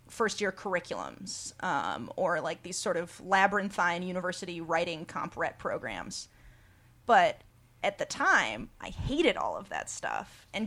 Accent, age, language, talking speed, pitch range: American, 30-49, English, 140 wpm, 175-230 Hz